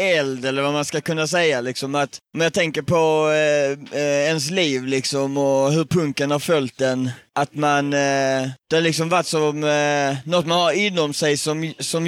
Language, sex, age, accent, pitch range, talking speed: Swedish, male, 30-49, native, 140-165 Hz, 200 wpm